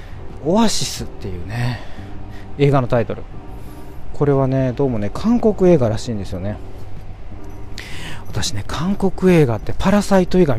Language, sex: Japanese, male